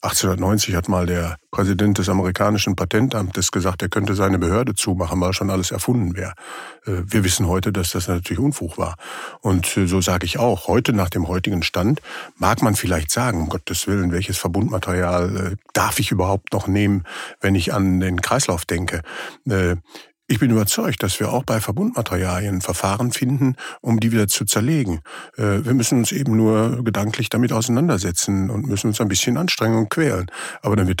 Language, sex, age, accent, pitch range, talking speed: German, male, 50-69, German, 95-125 Hz, 175 wpm